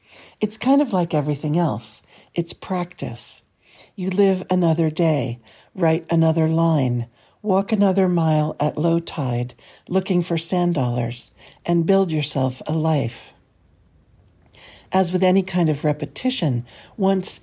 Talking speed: 125 wpm